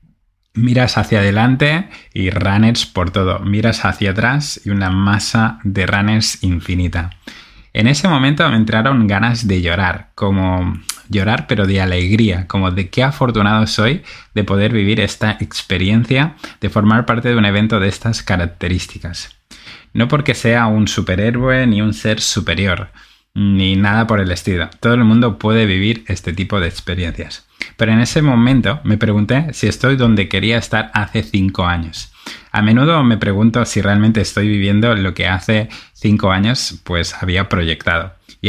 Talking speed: 160 wpm